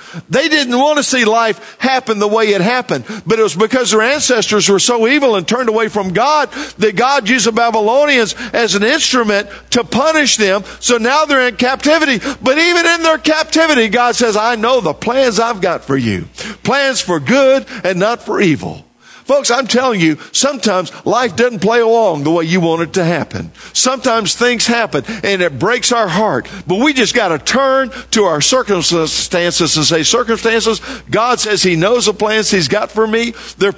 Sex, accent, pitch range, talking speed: male, American, 170-250 Hz, 195 wpm